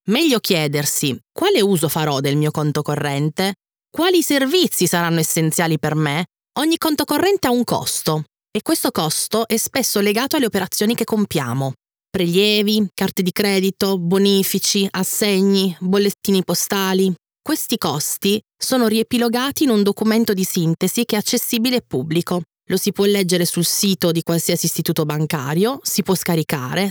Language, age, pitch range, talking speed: Italian, 20-39, 160-220 Hz, 145 wpm